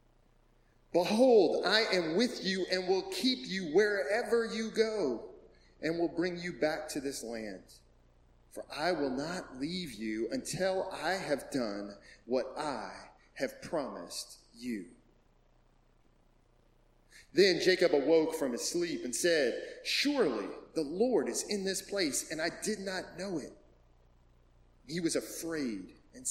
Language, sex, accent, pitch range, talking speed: English, male, American, 120-205 Hz, 135 wpm